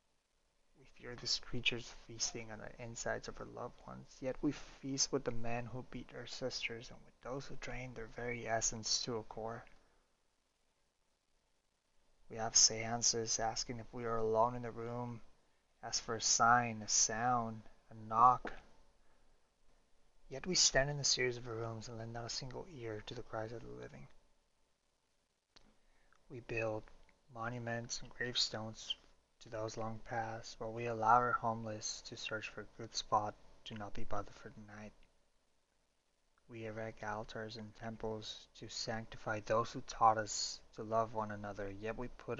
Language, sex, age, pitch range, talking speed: English, male, 20-39, 110-120 Hz, 165 wpm